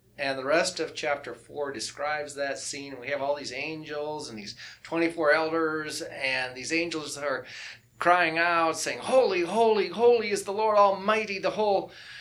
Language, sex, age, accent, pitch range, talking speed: English, male, 30-49, American, 135-165 Hz, 165 wpm